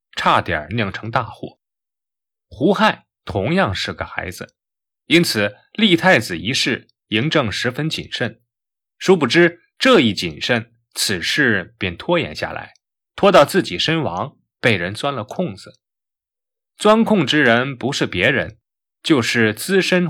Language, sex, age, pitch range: Chinese, male, 20-39, 115-175 Hz